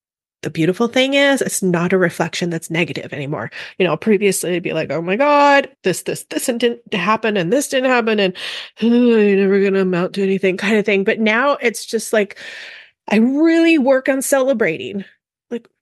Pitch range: 200-255 Hz